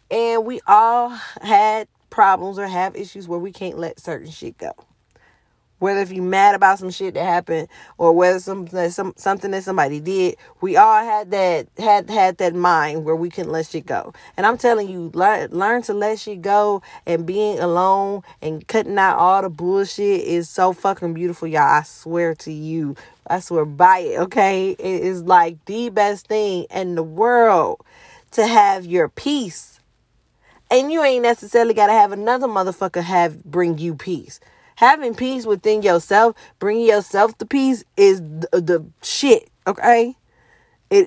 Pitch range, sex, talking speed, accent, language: 175-230 Hz, female, 175 wpm, American, English